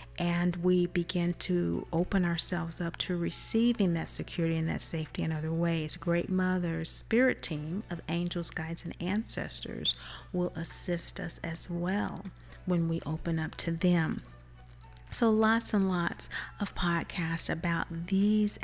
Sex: female